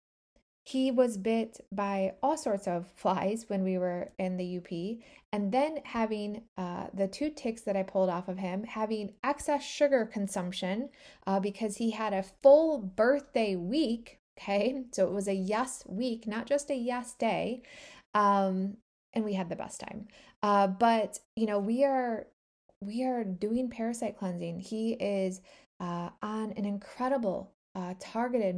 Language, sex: English, female